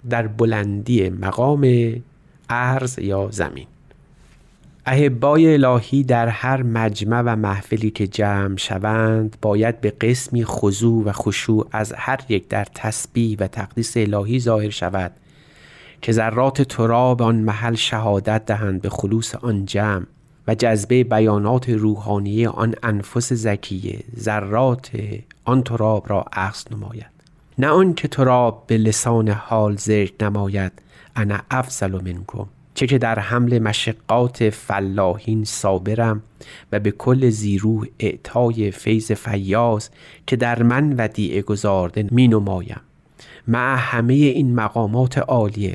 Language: Persian